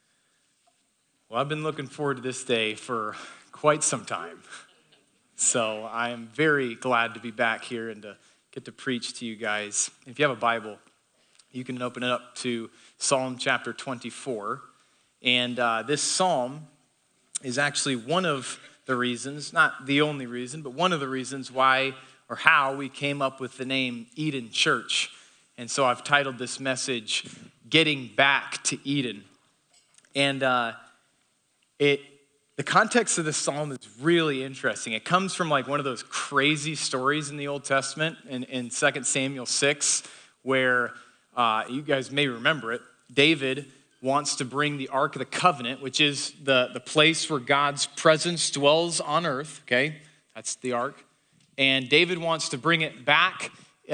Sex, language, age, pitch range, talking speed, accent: male, English, 30-49, 125-150 Hz, 165 wpm, American